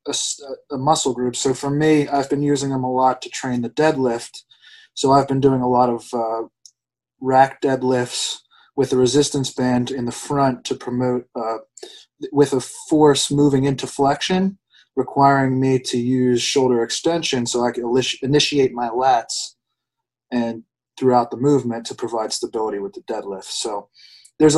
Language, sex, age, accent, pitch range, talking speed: English, male, 20-39, American, 120-145 Hz, 165 wpm